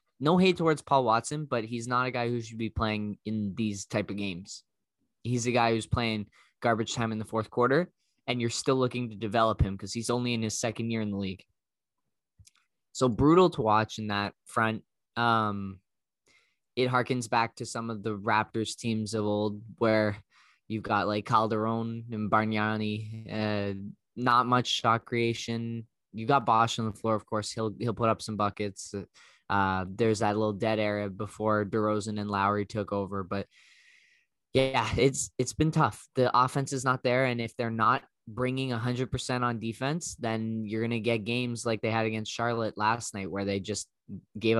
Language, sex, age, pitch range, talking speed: English, male, 10-29, 105-120 Hz, 190 wpm